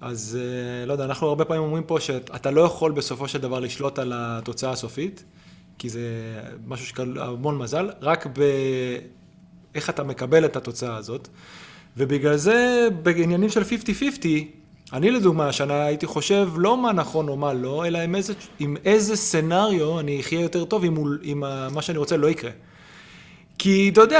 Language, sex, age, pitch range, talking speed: Hebrew, male, 30-49, 130-170 Hz, 165 wpm